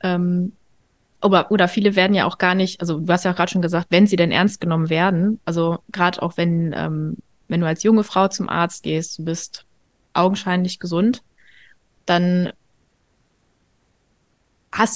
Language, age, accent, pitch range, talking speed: German, 20-39, German, 170-205 Hz, 165 wpm